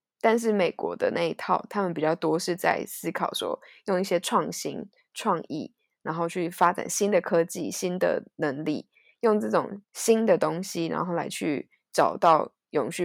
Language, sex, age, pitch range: Chinese, female, 20-39, 170-220 Hz